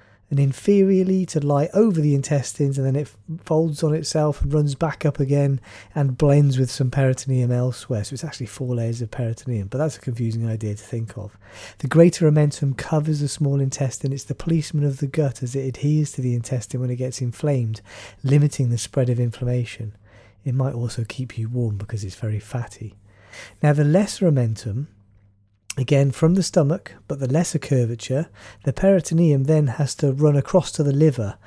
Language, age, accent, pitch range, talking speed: English, 30-49, British, 115-150 Hz, 190 wpm